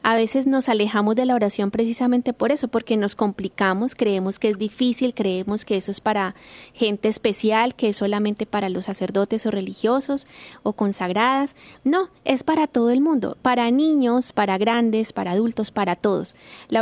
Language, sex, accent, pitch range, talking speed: Spanish, female, Colombian, 210-260 Hz, 175 wpm